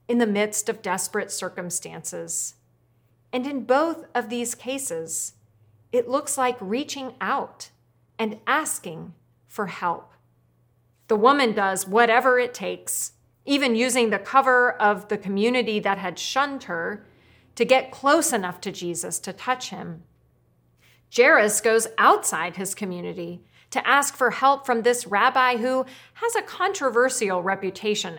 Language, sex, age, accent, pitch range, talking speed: English, female, 40-59, American, 175-245 Hz, 135 wpm